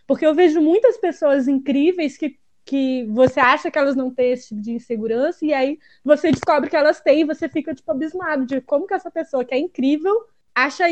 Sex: female